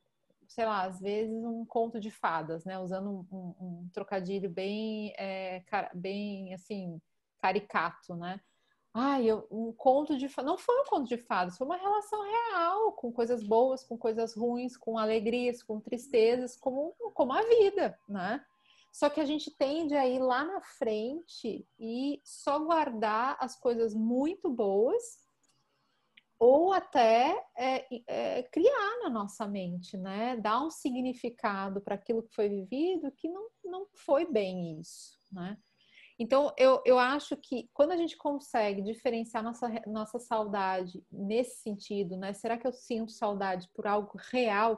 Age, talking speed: 30-49, 145 wpm